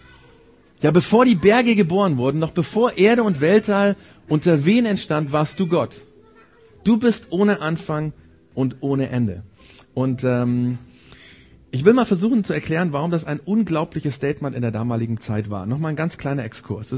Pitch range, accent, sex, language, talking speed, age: 130-195 Hz, German, male, German, 170 wpm, 40-59